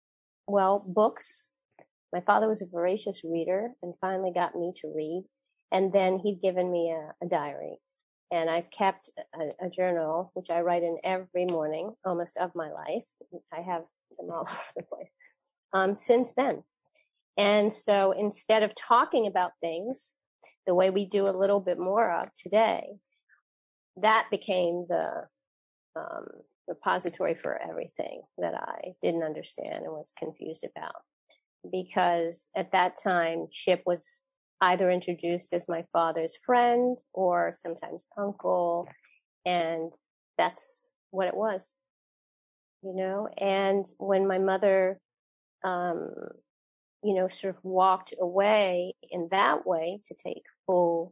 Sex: female